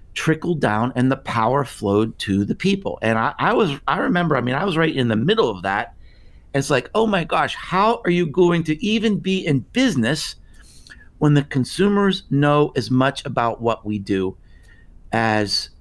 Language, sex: English, male